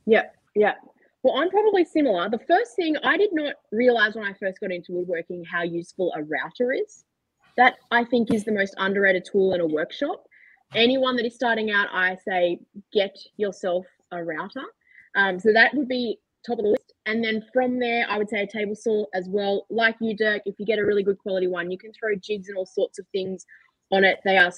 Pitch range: 180-235 Hz